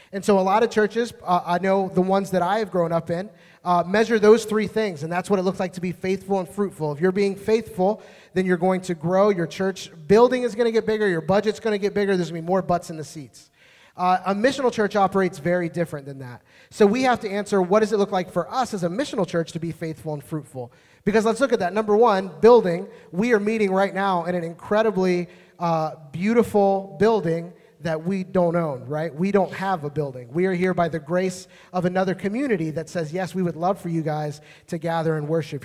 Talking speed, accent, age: 245 wpm, American, 30-49